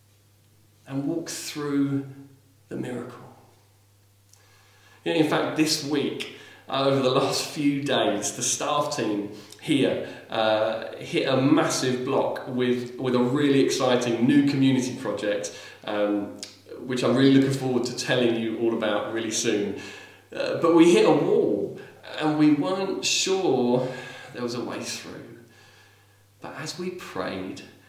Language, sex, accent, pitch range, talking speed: English, male, British, 105-140 Hz, 135 wpm